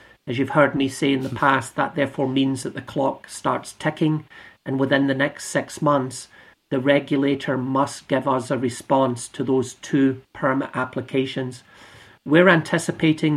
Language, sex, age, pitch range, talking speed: English, male, 50-69, 130-140 Hz, 160 wpm